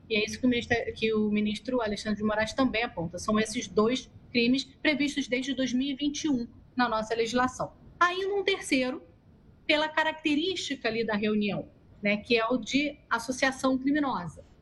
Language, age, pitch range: Portuguese, 30-49, 210-265 Hz